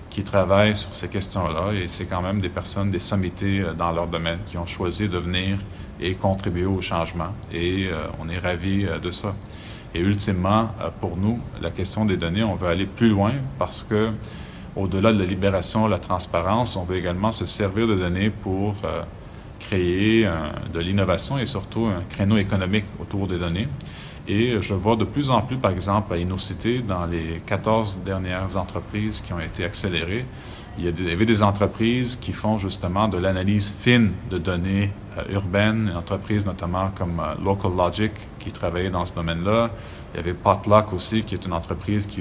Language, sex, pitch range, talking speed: French, male, 90-105 Hz, 180 wpm